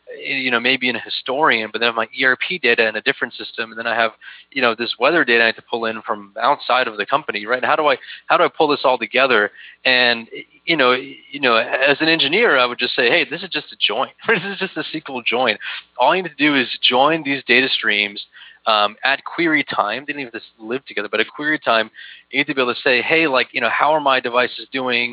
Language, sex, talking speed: English, male, 265 wpm